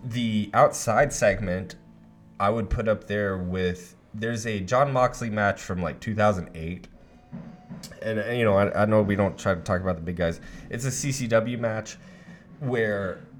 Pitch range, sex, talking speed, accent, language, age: 95-120 Hz, male, 170 wpm, American, English, 20-39